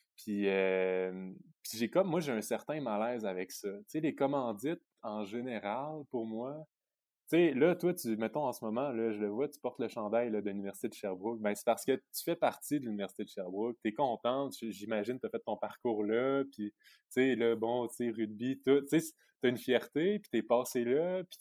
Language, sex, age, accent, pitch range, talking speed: French, male, 20-39, Canadian, 105-145 Hz, 225 wpm